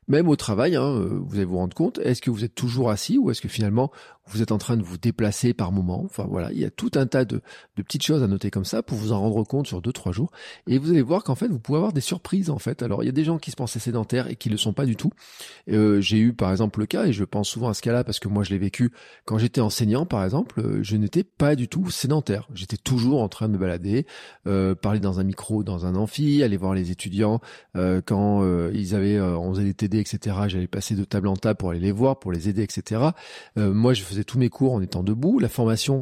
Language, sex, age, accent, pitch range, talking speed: French, male, 40-59, French, 105-130 Hz, 285 wpm